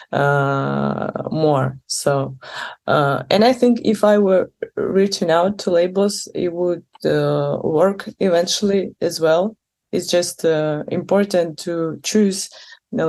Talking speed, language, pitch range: 135 wpm, English, 155-200 Hz